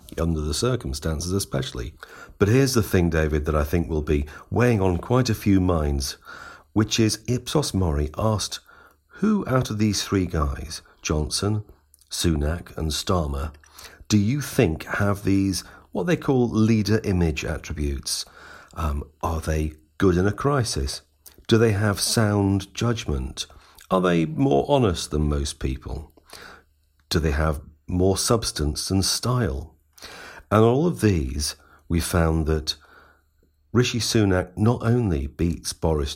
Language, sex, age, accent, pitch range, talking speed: English, male, 50-69, British, 75-100 Hz, 140 wpm